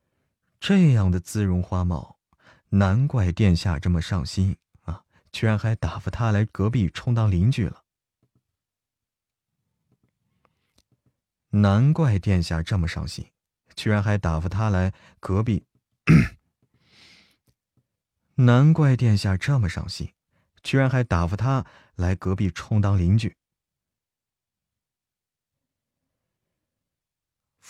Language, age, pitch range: Chinese, 30-49, 90-115 Hz